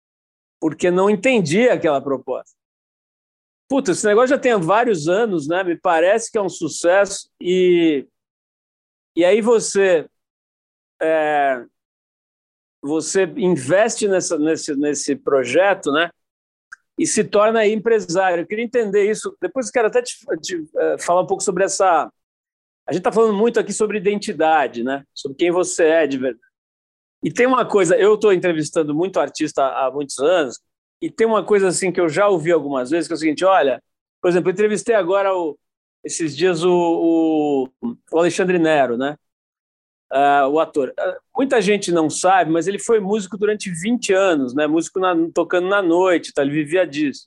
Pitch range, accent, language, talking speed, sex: 160-215 Hz, Brazilian, Portuguese, 155 wpm, male